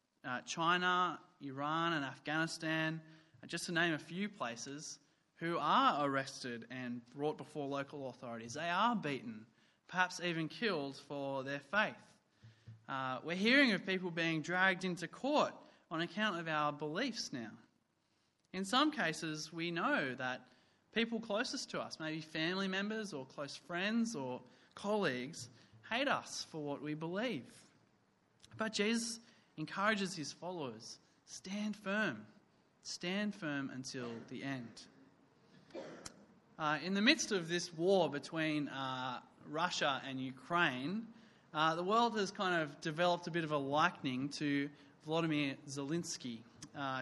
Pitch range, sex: 140-190 Hz, male